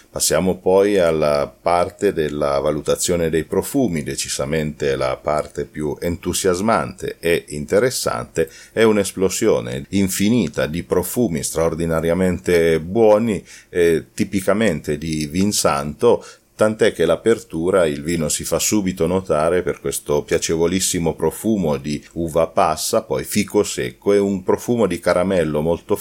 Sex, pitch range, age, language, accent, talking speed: male, 75-100 Hz, 40-59, Italian, native, 120 wpm